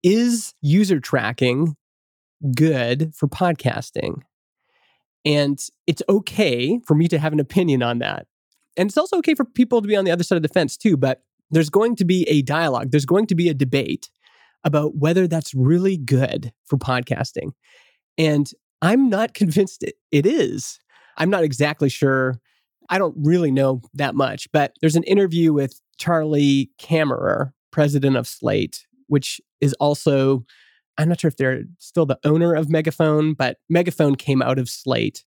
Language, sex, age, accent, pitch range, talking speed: English, male, 20-39, American, 135-170 Hz, 165 wpm